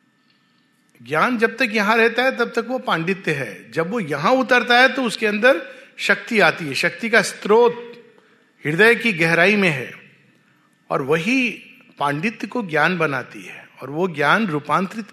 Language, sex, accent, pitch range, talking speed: Hindi, male, native, 165-250 Hz, 165 wpm